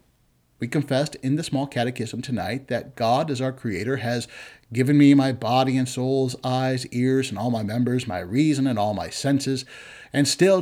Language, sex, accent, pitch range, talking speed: English, male, American, 120-145 Hz, 185 wpm